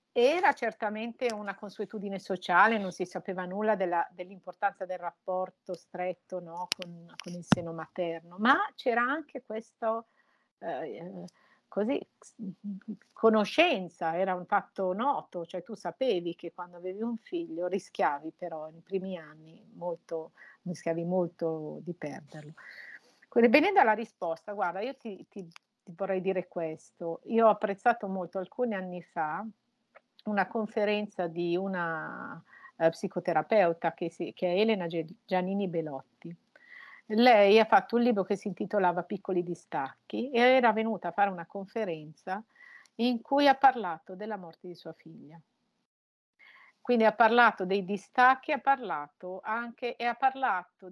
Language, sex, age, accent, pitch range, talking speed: Italian, female, 50-69, native, 175-230 Hz, 130 wpm